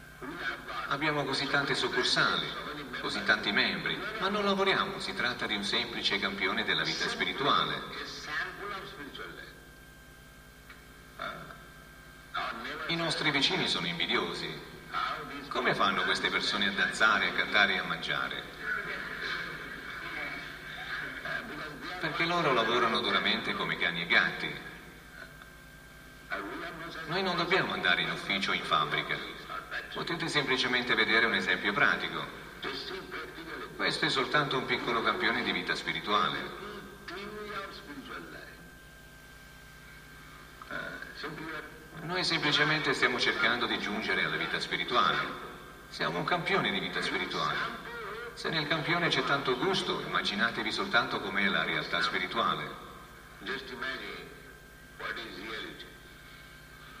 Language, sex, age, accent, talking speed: Italian, male, 50-69, native, 105 wpm